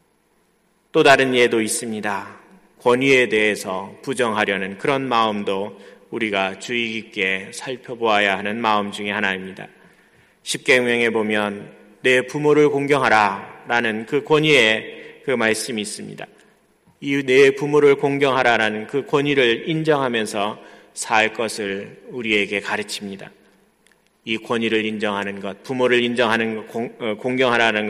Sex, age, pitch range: male, 30-49, 105-140 Hz